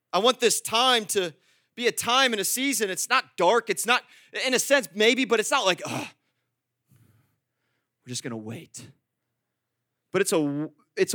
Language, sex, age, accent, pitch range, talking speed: English, male, 30-49, American, 135-210 Hz, 180 wpm